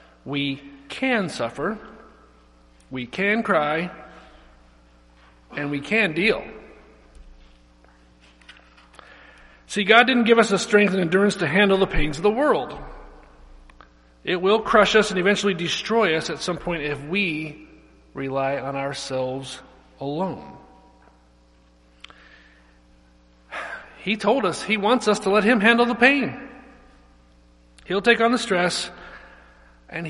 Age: 40-59